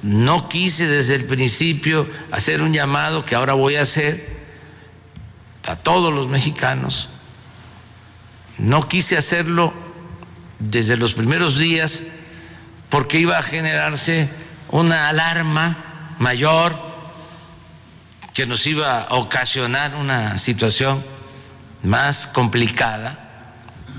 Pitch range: 110-160 Hz